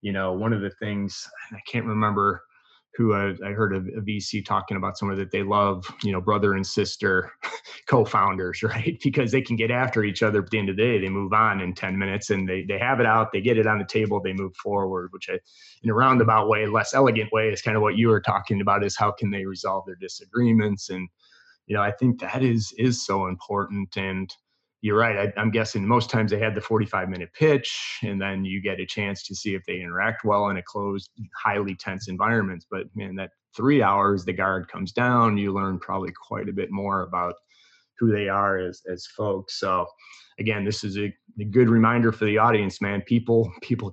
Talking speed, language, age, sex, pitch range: 230 wpm, English, 30-49, male, 95-110 Hz